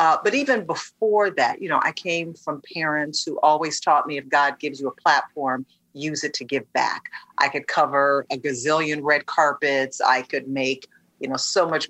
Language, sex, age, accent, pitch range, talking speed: English, female, 40-59, American, 140-175 Hz, 200 wpm